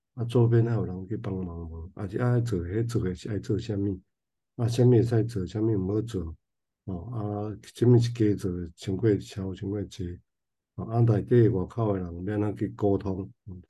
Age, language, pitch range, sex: 50-69, Chinese, 95-120 Hz, male